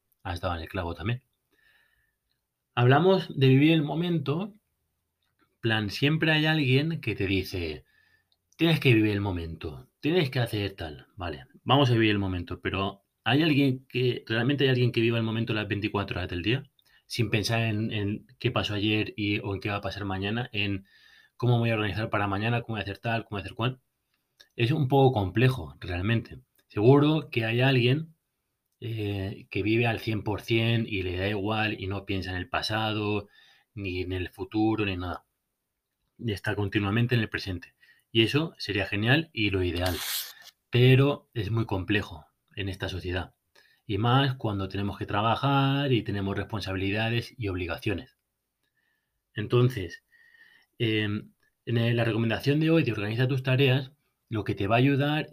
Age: 30-49